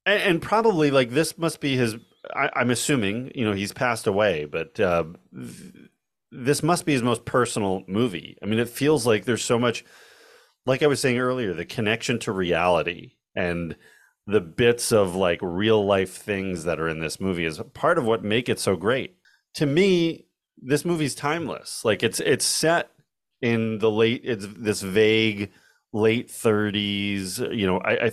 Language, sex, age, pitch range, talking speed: English, male, 30-49, 95-130 Hz, 180 wpm